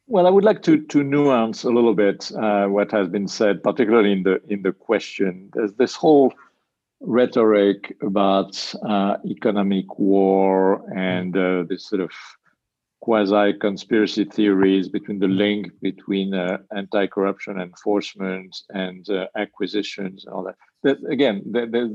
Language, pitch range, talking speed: English, 95-115 Hz, 145 wpm